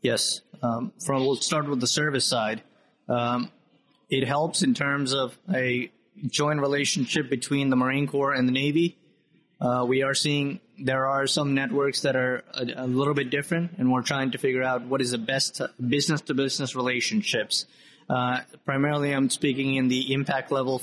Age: 30-49